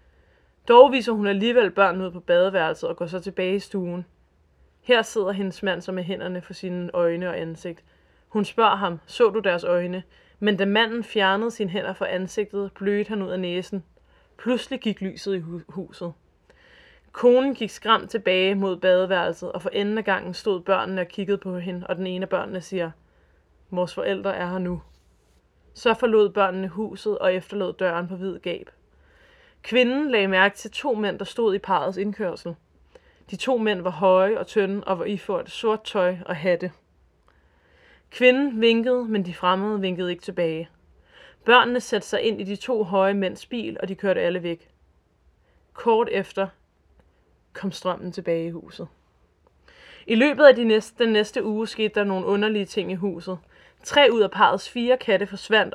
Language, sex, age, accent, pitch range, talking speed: Danish, female, 20-39, native, 180-215 Hz, 180 wpm